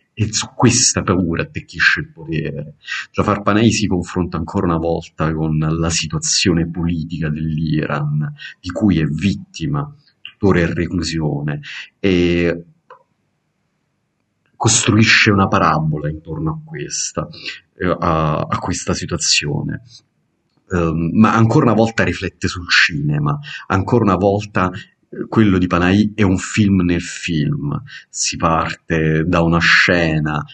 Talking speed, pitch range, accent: 115 wpm, 80-100 Hz, native